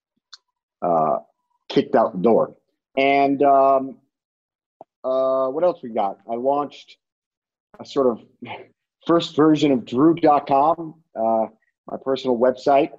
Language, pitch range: English, 115-145 Hz